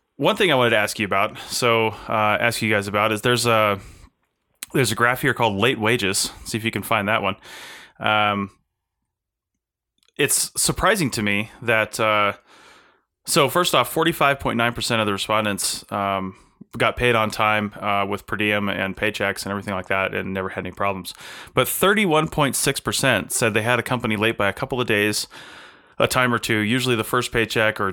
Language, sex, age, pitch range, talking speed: English, male, 20-39, 100-120 Hz, 205 wpm